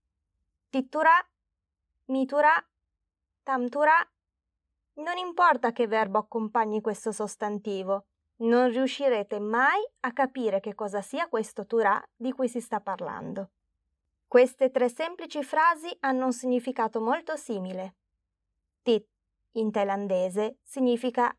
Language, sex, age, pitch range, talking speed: Italian, female, 20-39, 205-275 Hz, 105 wpm